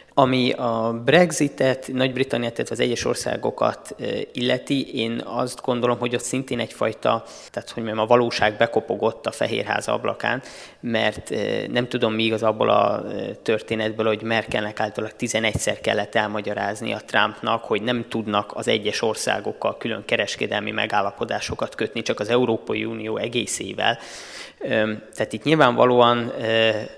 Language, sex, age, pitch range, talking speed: Hungarian, male, 20-39, 110-125 Hz, 130 wpm